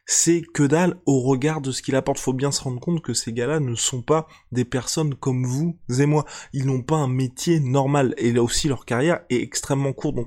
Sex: male